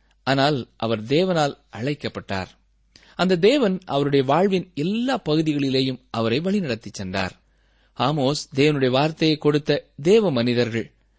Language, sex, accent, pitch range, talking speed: Tamil, male, native, 130-185 Hz, 100 wpm